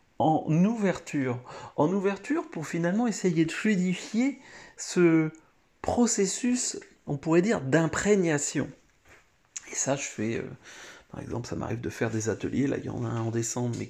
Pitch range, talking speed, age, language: 120-170 Hz, 160 wpm, 40-59, French